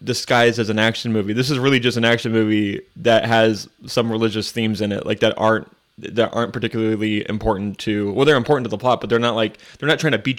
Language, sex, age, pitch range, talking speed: English, male, 20-39, 110-125 Hz, 245 wpm